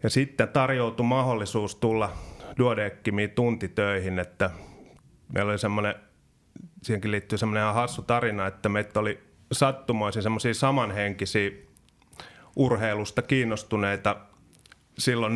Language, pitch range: Finnish, 100-120 Hz